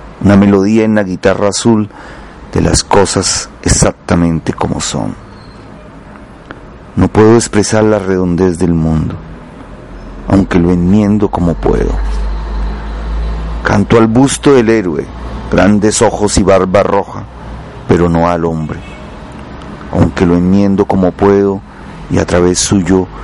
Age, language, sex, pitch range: 40-59, Spanish, male, 85-105 Hz